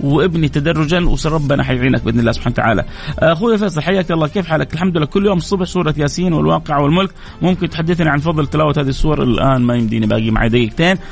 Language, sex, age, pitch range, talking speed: Arabic, male, 30-49, 120-155 Hz, 195 wpm